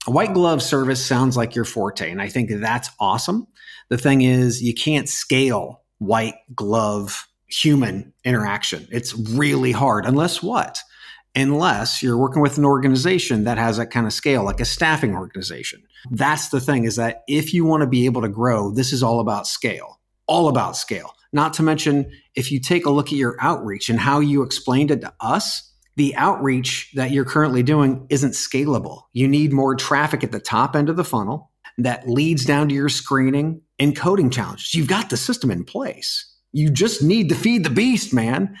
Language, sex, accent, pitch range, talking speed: English, male, American, 125-155 Hz, 195 wpm